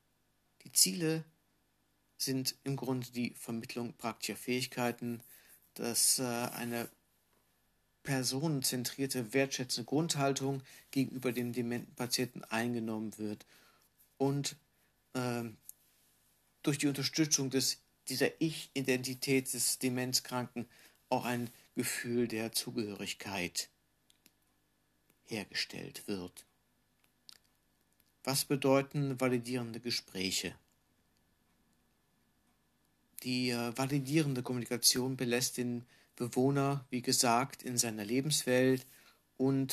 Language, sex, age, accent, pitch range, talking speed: German, male, 60-79, German, 115-135 Hz, 75 wpm